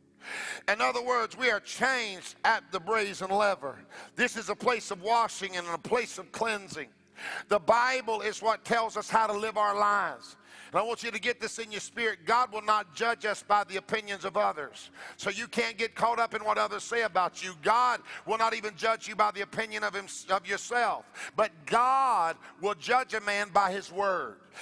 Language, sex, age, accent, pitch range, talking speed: English, male, 50-69, American, 205-235 Hz, 205 wpm